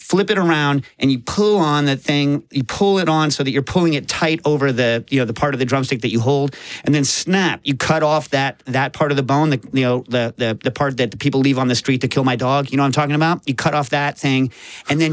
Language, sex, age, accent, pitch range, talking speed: English, male, 40-59, American, 135-160 Hz, 295 wpm